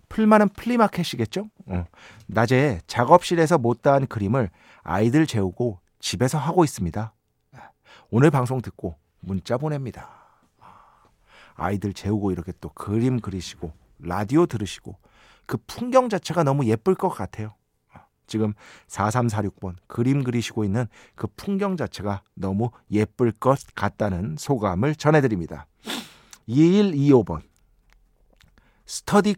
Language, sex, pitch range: Korean, male, 110-175 Hz